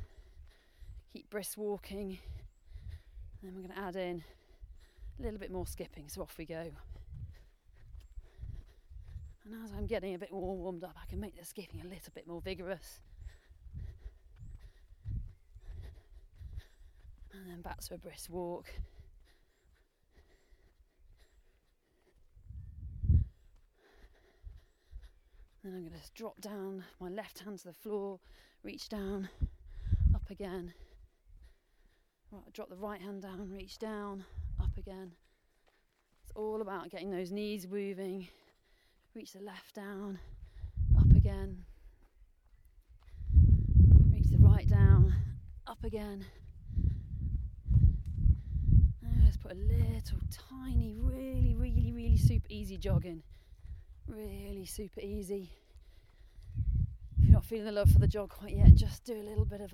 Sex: female